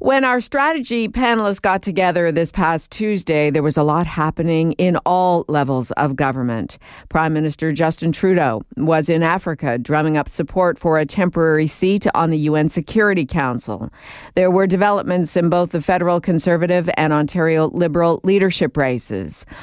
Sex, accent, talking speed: female, American, 155 wpm